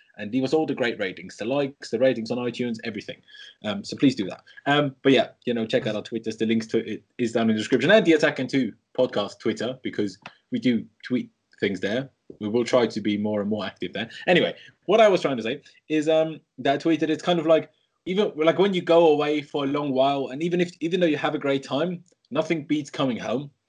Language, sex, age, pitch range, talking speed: English, male, 20-39, 125-160 Hz, 255 wpm